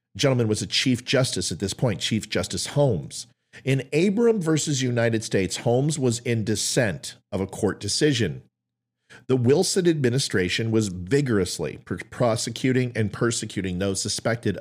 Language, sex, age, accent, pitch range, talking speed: English, male, 40-59, American, 95-135 Hz, 140 wpm